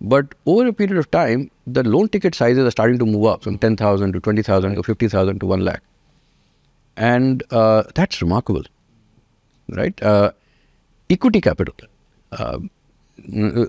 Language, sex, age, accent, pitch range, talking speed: English, male, 50-69, Indian, 95-135 Hz, 145 wpm